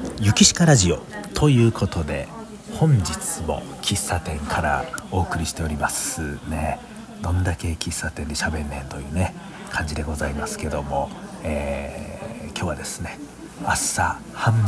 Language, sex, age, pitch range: Japanese, male, 40-59, 75-100 Hz